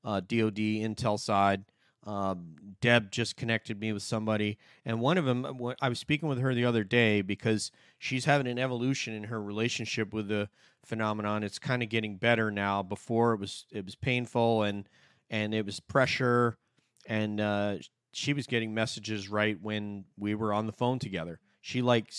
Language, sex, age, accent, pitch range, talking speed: English, male, 30-49, American, 105-125 Hz, 180 wpm